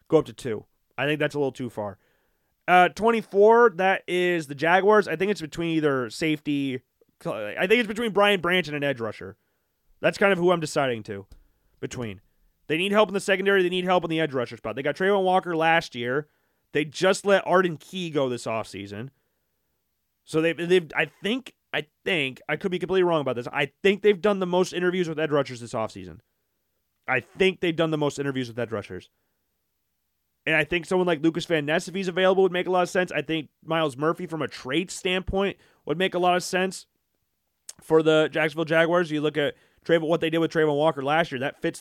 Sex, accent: male, American